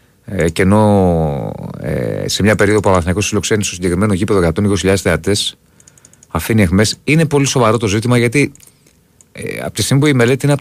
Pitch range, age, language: 90-125 Hz, 30-49, Greek